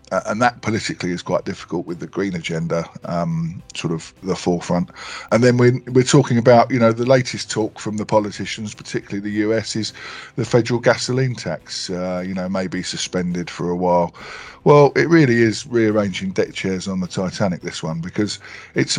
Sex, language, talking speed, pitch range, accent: male, English, 195 wpm, 95-125 Hz, British